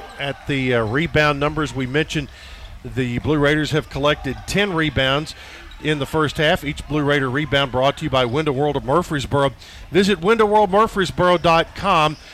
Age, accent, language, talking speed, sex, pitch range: 50-69, American, English, 155 wpm, male, 130-155 Hz